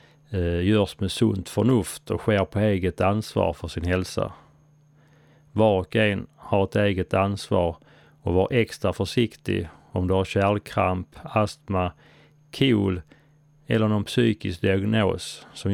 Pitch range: 95-150 Hz